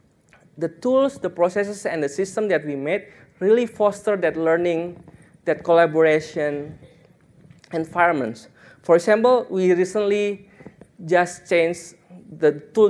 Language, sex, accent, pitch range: English, male, Indonesian, 155-190 Hz